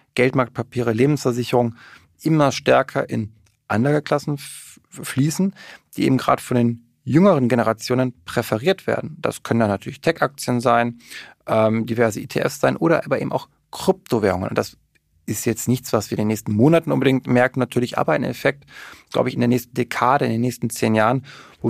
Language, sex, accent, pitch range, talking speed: German, male, German, 115-135 Hz, 170 wpm